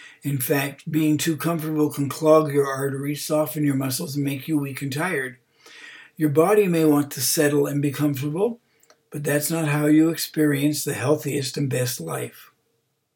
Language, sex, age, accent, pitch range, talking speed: English, male, 60-79, American, 140-160 Hz, 175 wpm